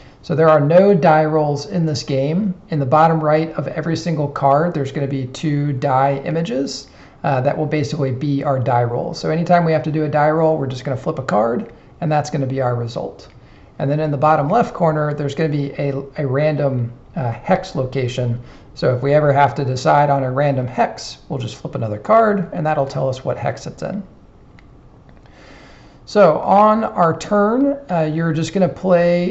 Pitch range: 140-170 Hz